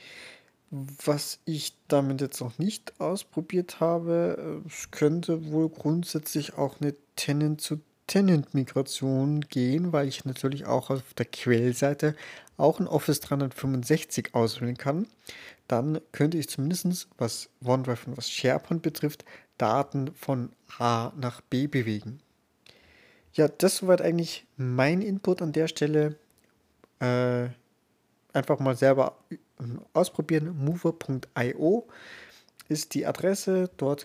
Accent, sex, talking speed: German, male, 110 wpm